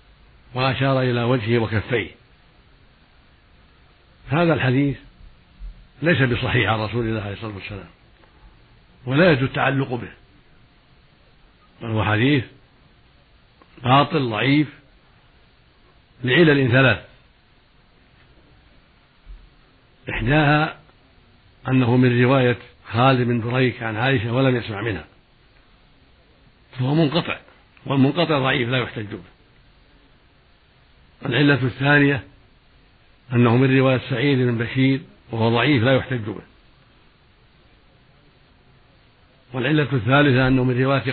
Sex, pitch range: male, 115-135 Hz